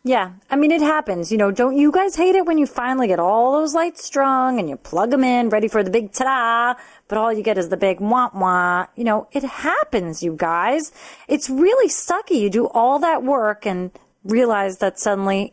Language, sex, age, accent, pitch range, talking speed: English, female, 30-49, American, 190-255 Hz, 215 wpm